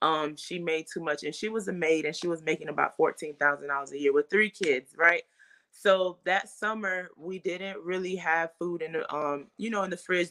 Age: 20-39